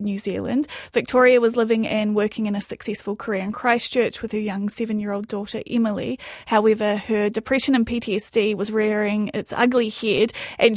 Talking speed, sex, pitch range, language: 165 wpm, female, 210-235 Hz, English